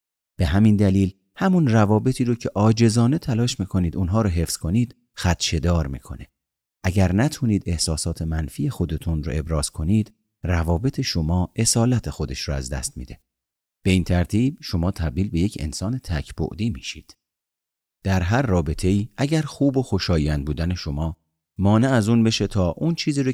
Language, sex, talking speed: Persian, male, 155 wpm